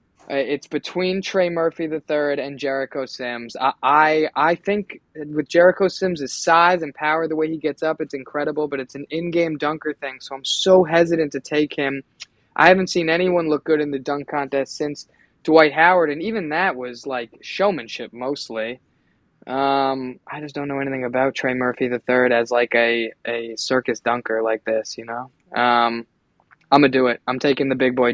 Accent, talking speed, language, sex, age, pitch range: American, 195 wpm, English, male, 20-39, 125-155 Hz